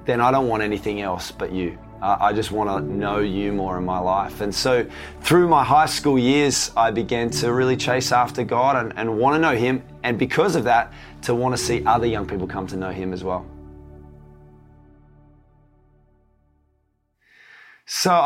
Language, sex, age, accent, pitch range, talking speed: English, male, 20-39, Australian, 100-135 Hz, 185 wpm